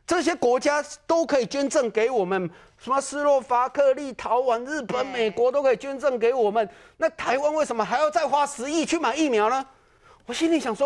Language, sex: Chinese, male